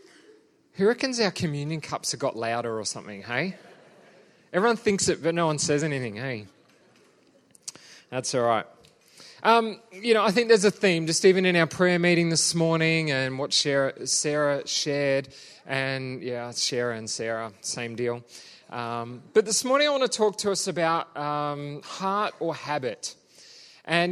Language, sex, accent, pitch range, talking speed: English, male, Australian, 145-195 Hz, 165 wpm